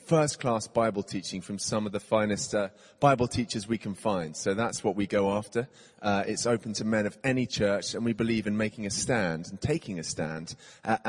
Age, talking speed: 30-49, 215 wpm